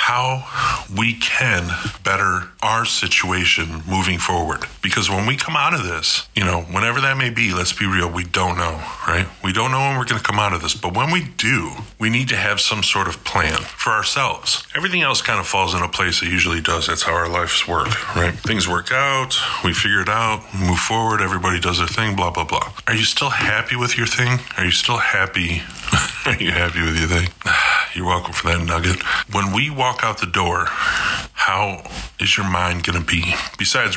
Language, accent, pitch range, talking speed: English, American, 85-110 Hz, 215 wpm